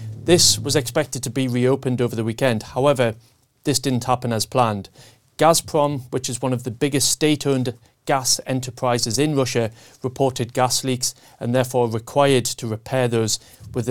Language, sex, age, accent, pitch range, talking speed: English, male, 30-49, British, 115-135 Hz, 160 wpm